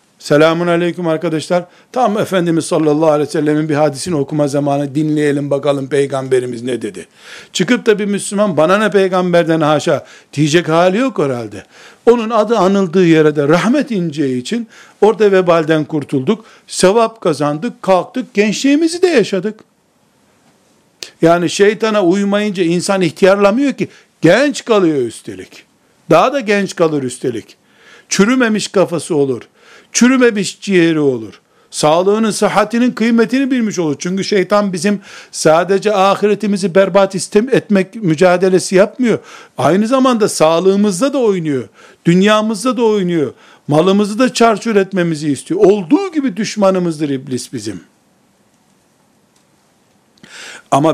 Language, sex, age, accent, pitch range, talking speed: Turkish, male, 60-79, native, 160-215 Hz, 120 wpm